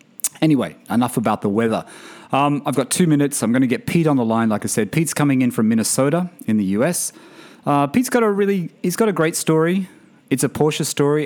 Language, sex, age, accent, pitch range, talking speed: English, male, 30-49, Australian, 105-145 Hz, 230 wpm